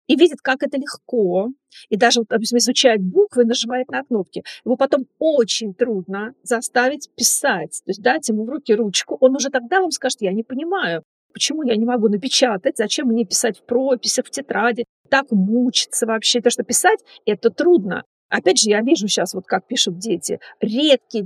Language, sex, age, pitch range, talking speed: Russian, female, 40-59, 215-260 Hz, 185 wpm